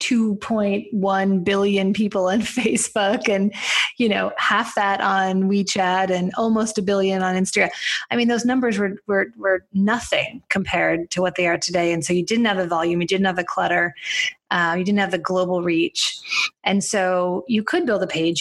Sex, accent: female, American